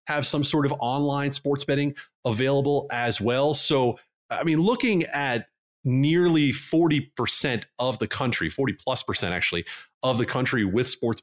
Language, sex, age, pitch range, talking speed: English, male, 30-49, 110-140 Hz, 155 wpm